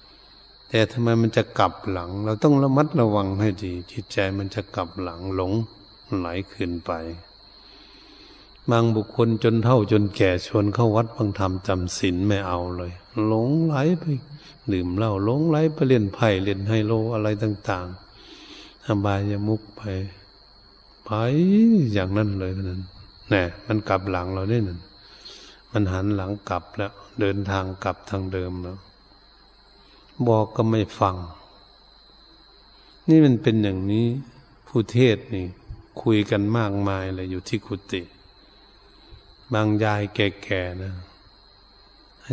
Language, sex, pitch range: Thai, male, 100-115 Hz